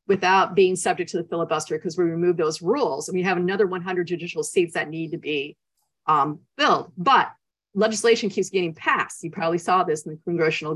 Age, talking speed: 40-59, 200 wpm